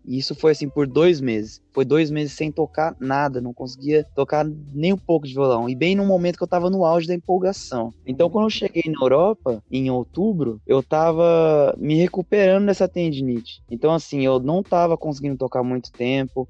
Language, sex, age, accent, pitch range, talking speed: Portuguese, male, 20-39, Brazilian, 130-170 Hz, 200 wpm